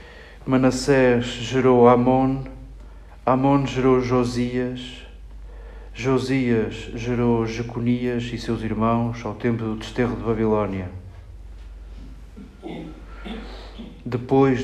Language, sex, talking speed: Portuguese, male, 80 wpm